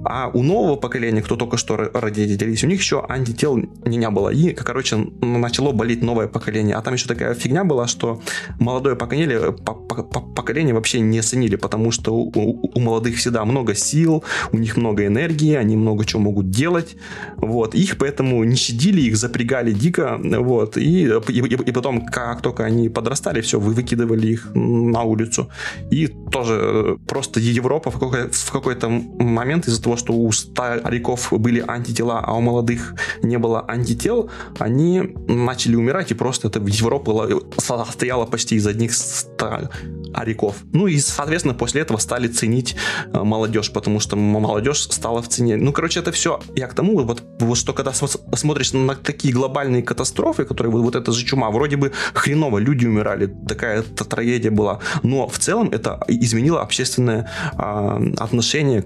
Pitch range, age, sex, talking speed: 110-130 Hz, 20-39, male, 155 wpm